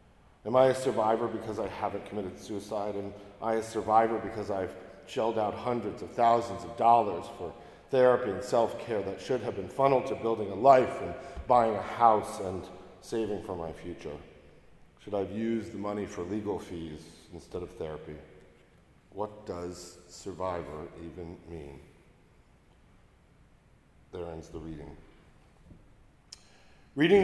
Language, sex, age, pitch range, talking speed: English, male, 40-59, 95-120 Hz, 145 wpm